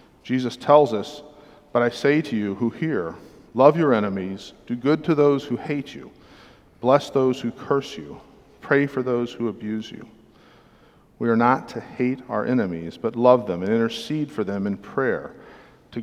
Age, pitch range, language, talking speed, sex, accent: 50-69, 110-135 Hz, English, 180 wpm, male, American